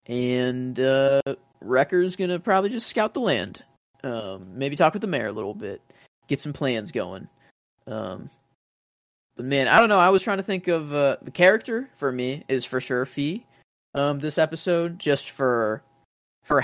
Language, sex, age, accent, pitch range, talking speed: English, male, 20-39, American, 120-145 Hz, 175 wpm